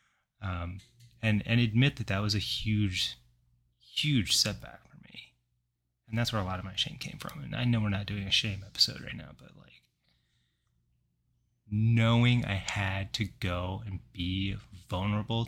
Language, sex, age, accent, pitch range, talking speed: English, male, 30-49, American, 90-115 Hz, 170 wpm